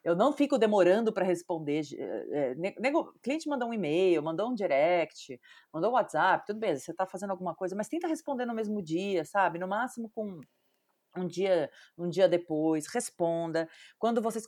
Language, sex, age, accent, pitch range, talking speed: Portuguese, female, 30-49, Brazilian, 160-225 Hz, 175 wpm